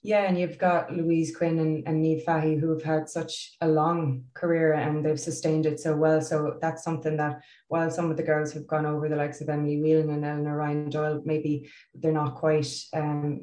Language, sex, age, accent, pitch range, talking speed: English, female, 20-39, Irish, 145-155 Hz, 220 wpm